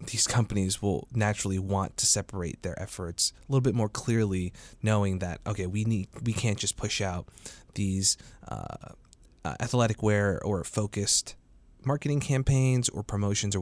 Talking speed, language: 160 wpm, English